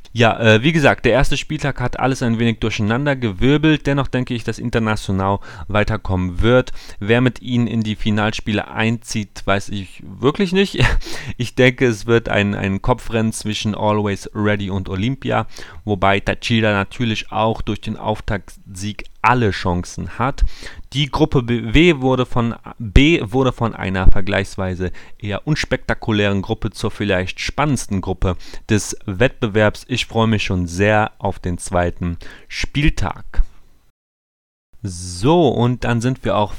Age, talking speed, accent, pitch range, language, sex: 30-49, 140 wpm, German, 95-120 Hz, German, male